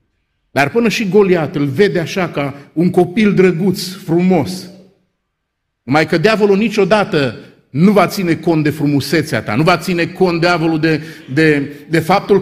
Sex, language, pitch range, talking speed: male, Romanian, 160-220 Hz, 155 wpm